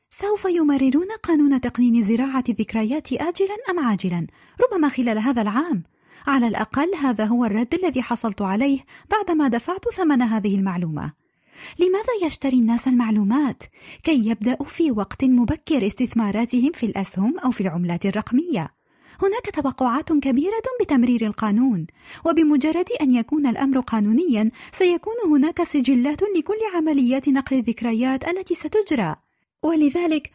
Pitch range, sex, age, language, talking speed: 225-320 Hz, female, 20-39, Arabic, 125 wpm